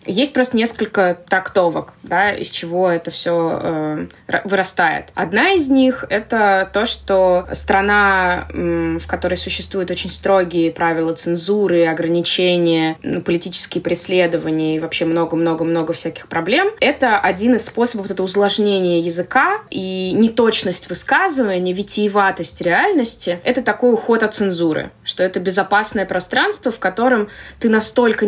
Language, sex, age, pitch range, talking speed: Russian, female, 20-39, 180-220 Hz, 130 wpm